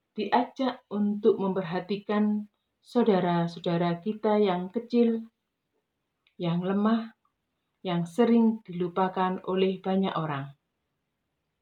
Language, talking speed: Indonesian, 75 wpm